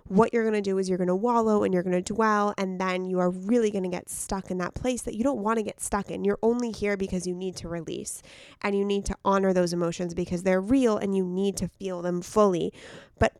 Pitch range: 185-225 Hz